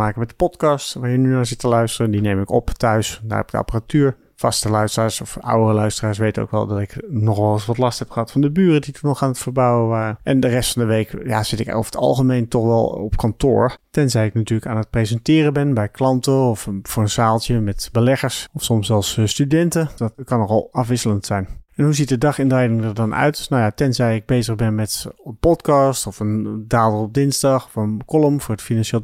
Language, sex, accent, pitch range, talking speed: Dutch, male, Dutch, 110-135 Hz, 240 wpm